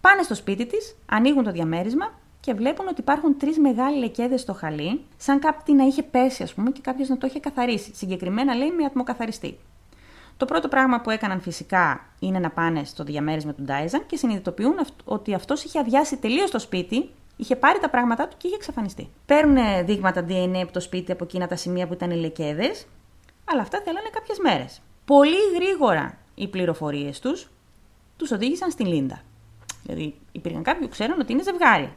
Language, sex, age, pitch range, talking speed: Greek, female, 30-49, 185-275 Hz, 180 wpm